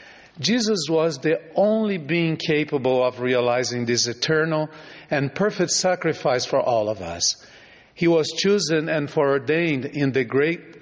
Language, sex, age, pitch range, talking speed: English, male, 50-69, 130-165 Hz, 140 wpm